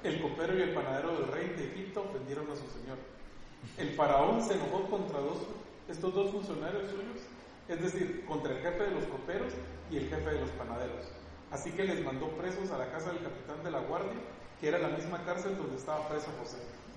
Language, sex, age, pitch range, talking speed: Spanish, male, 40-59, 140-190 Hz, 210 wpm